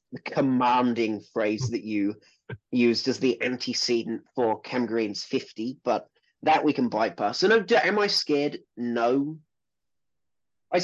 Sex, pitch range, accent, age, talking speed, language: male, 105-135 Hz, British, 30-49, 145 wpm, English